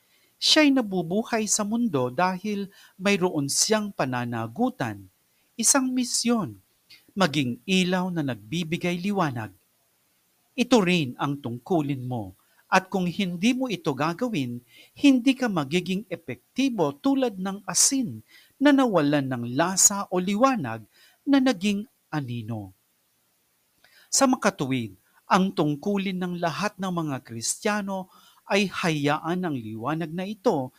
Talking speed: 110 wpm